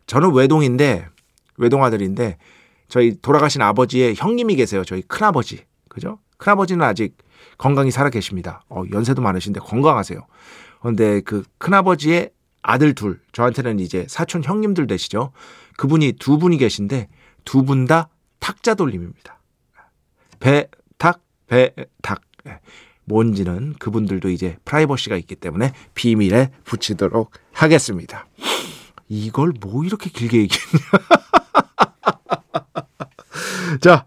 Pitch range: 105-150 Hz